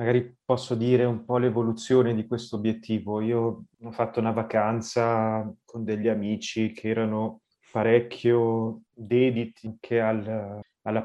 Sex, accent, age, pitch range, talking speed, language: male, native, 20-39, 105-120 Hz, 130 wpm, Italian